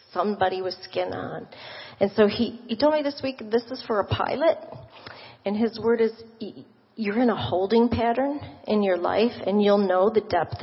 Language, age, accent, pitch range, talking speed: English, 40-59, American, 185-230 Hz, 190 wpm